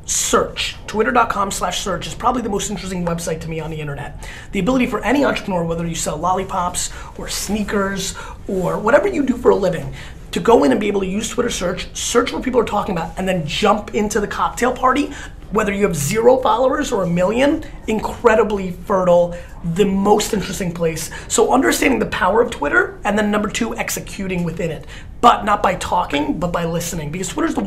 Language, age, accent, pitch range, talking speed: English, 30-49, American, 175-220 Hz, 200 wpm